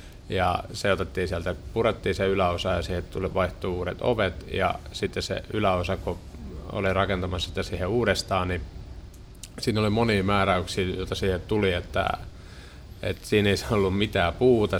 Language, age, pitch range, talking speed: Finnish, 30-49, 90-100 Hz, 150 wpm